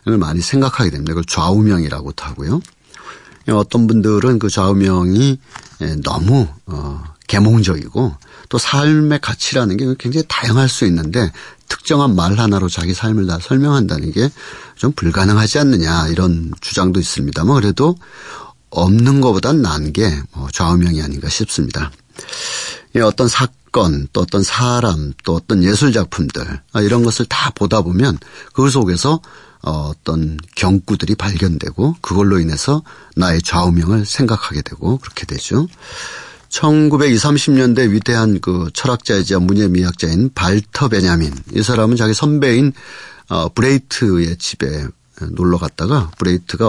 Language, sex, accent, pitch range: Korean, male, native, 85-125 Hz